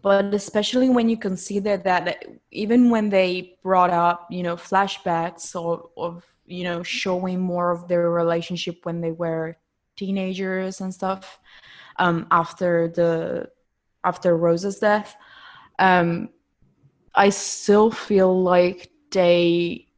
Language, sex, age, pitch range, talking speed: English, female, 20-39, 170-200 Hz, 130 wpm